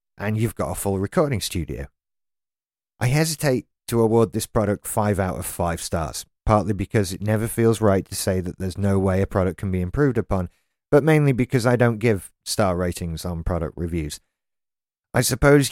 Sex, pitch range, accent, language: male, 90-120 Hz, British, English